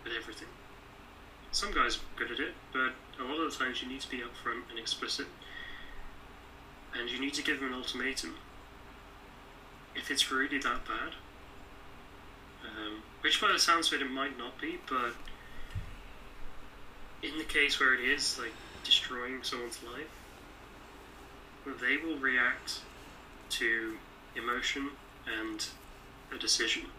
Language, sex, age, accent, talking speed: English, male, 20-39, British, 145 wpm